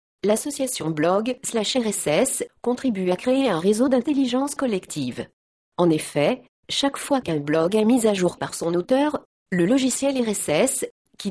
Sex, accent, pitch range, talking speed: female, French, 180-265 Hz, 150 wpm